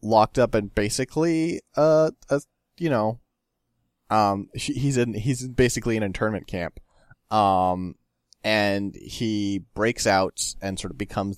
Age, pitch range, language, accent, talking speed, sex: 20-39, 90-110 Hz, English, American, 135 wpm, male